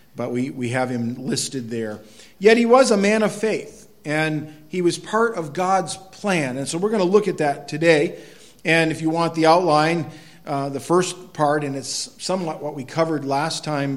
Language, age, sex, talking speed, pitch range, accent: English, 50-69, male, 205 wpm, 135-180 Hz, American